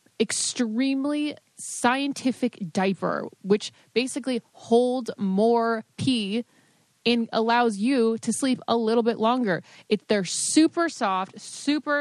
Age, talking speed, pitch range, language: 20-39, 105 wpm, 185-230 Hz, English